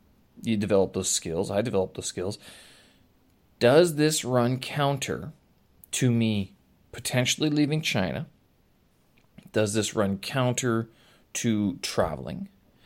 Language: English